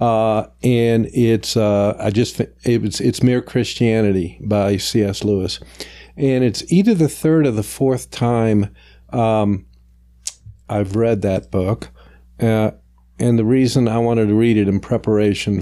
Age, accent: 50-69, American